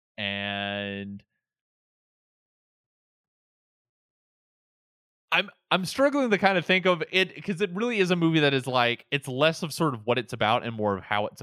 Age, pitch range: 20-39, 100-130 Hz